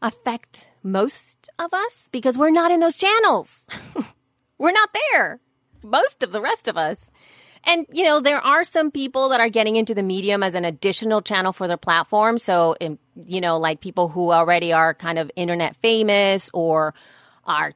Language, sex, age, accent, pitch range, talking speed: English, female, 30-49, American, 175-240 Hz, 185 wpm